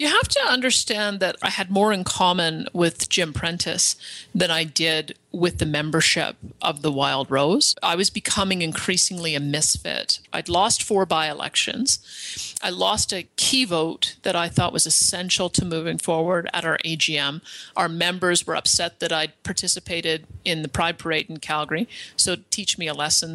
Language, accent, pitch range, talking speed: English, American, 160-195 Hz, 170 wpm